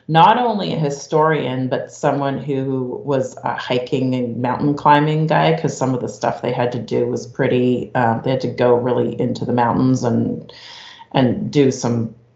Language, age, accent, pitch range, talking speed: English, 30-49, American, 120-140 Hz, 185 wpm